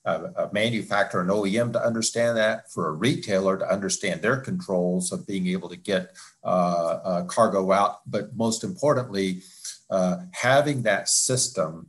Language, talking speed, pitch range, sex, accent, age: English, 150 wpm, 90-115 Hz, male, American, 50-69